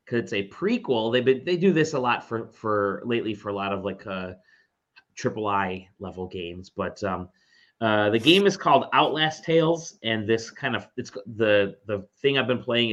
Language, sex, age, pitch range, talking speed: English, male, 30-49, 100-135 Hz, 205 wpm